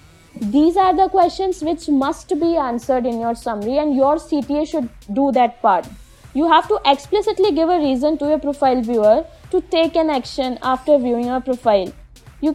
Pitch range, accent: 270-330 Hz, Indian